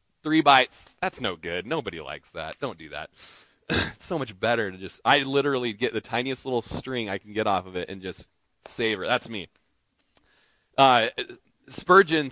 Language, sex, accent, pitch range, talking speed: English, male, American, 105-145 Hz, 180 wpm